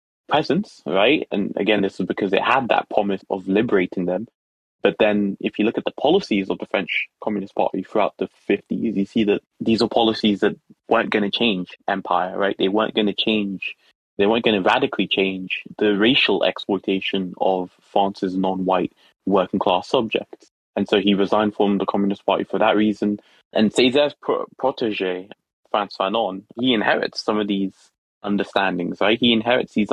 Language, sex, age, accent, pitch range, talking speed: English, male, 20-39, British, 100-110 Hz, 175 wpm